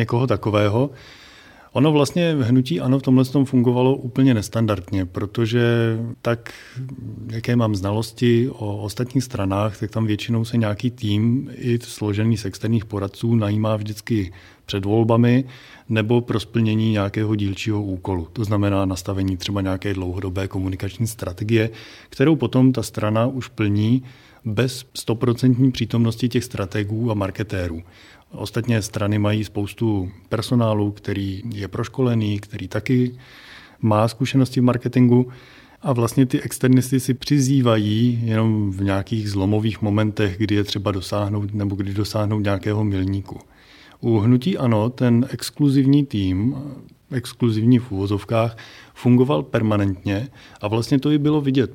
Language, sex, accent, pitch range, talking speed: Czech, male, native, 105-125 Hz, 130 wpm